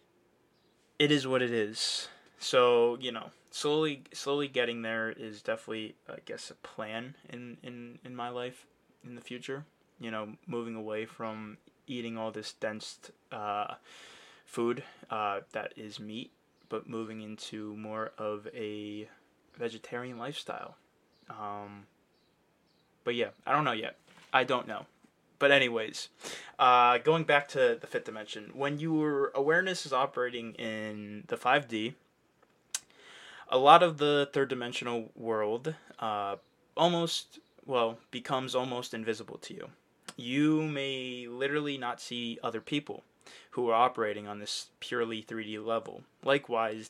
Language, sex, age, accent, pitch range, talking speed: English, male, 20-39, American, 110-135 Hz, 135 wpm